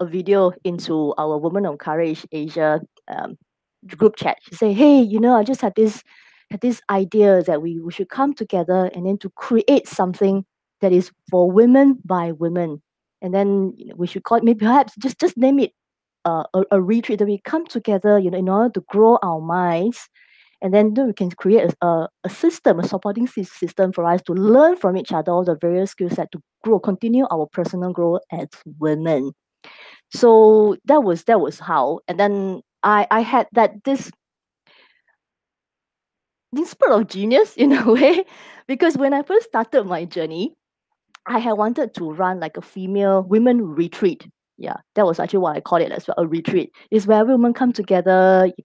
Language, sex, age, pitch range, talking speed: English, female, 20-39, 175-230 Hz, 195 wpm